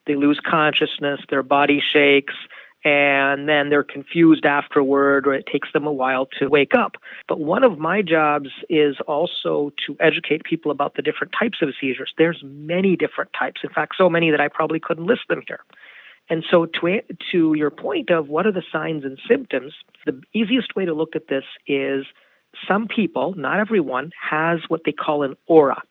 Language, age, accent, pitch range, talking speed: English, 40-59, American, 145-180 Hz, 190 wpm